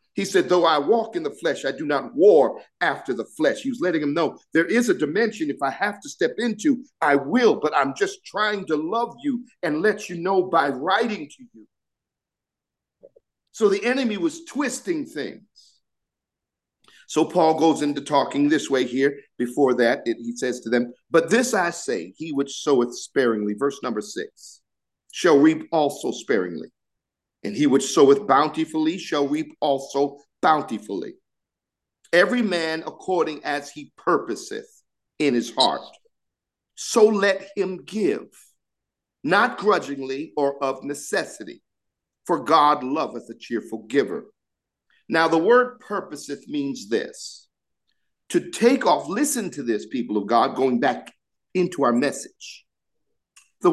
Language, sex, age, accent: English, male, 50-69, American